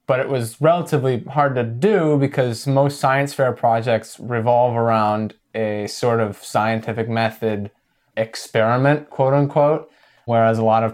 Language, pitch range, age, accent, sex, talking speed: English, 105-130 Hz, 20-39, American, male, 145 wpm